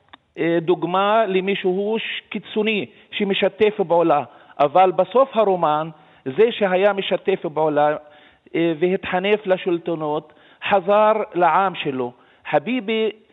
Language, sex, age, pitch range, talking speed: Hebrew, male, 40-59, 165-205 Hz, 80 wpm